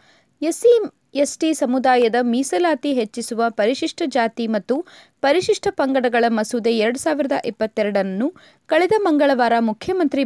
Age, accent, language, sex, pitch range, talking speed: 20-39, native, Kannada, female, 235-320 Hz, 100 wpm